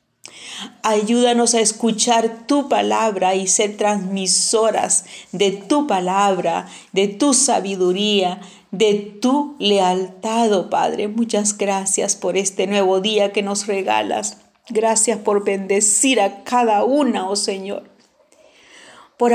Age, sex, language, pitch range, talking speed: 40-59, female, Spanish, 190-220 Hz, 115 wpm